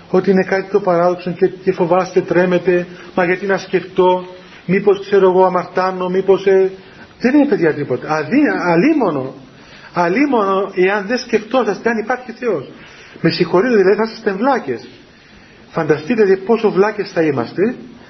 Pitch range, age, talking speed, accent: 175-220 Hz, 40-59, 145 wpm, native